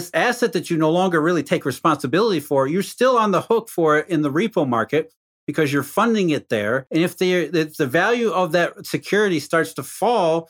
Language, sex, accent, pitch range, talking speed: English, male, American, 155-210 Hz, 210 wpm